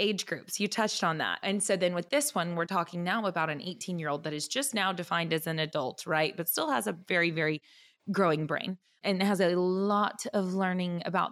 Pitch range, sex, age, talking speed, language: 165-210 Hz, female, 20-39, 235 wpm, English